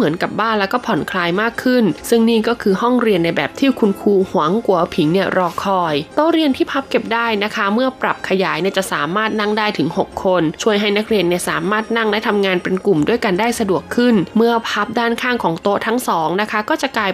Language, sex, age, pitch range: Thai, female, 20-39, 185-235 Hz